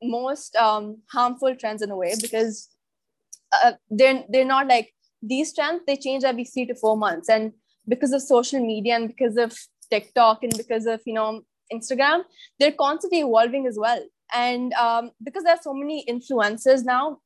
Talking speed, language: 175 wpm, English